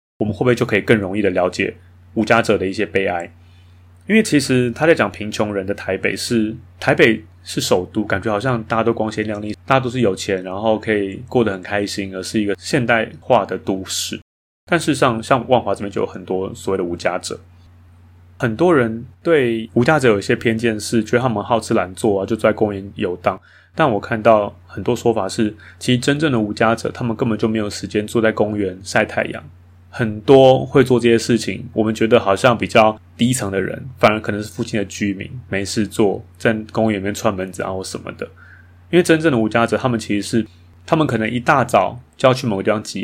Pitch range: 95-115 Hz